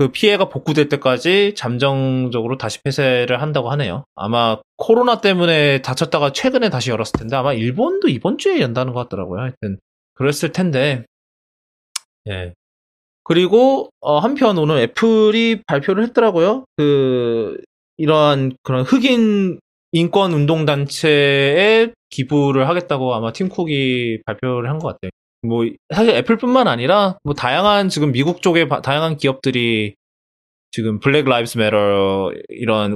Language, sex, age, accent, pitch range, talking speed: English, male, 20-39, Korean, 120-190 Hz, 115 wpm